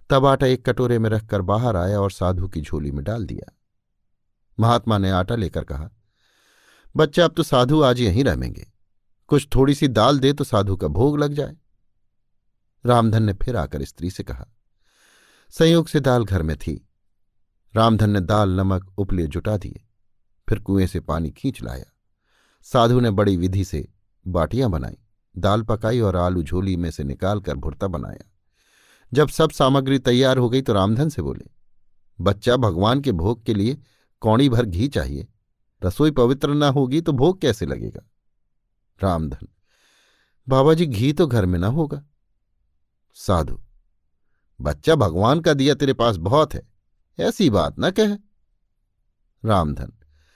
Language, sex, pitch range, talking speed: Hindi, male, 95-135 Hz, 155 wpm